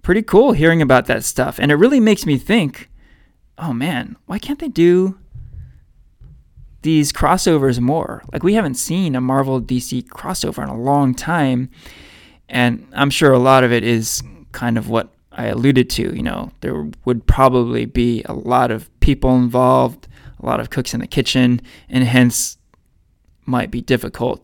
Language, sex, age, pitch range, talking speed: English, male, 20-39, 120-155 Hz, 170 wpm